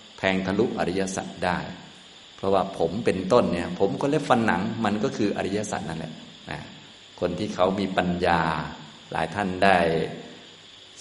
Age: 20-39